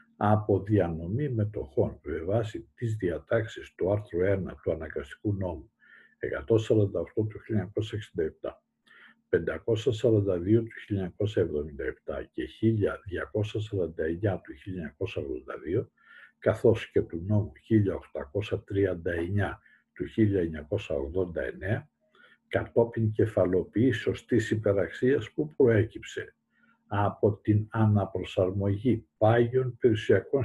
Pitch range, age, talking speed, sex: 100-120 Hz, 60-79, 80 wpm, male